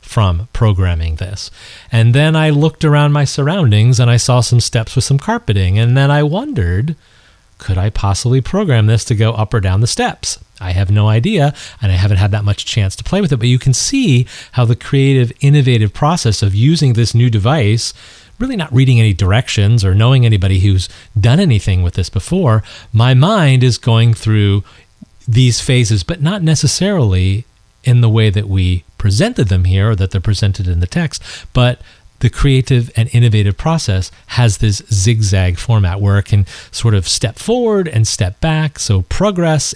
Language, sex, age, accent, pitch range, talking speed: English, male, 40-59, American, 100-130 Hz, 185 wpm